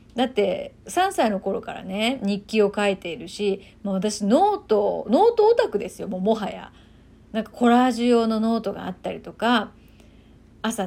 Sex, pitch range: female, 200-285 Hz